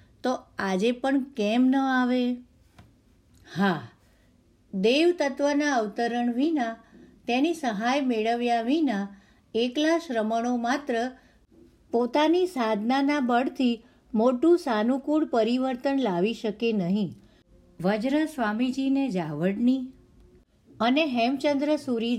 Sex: female